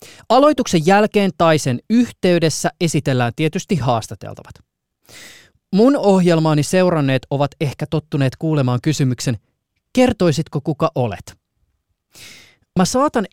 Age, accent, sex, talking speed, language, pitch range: 20-39, native, male, 95 wpm, Finnish, 125-185 Hz